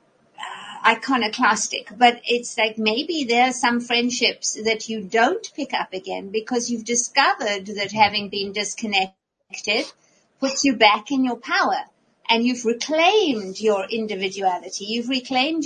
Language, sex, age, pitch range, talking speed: English, female, 50-69, 215-270 Hz, 135 wpm